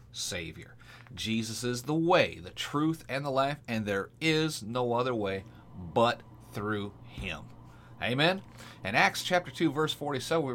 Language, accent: English, American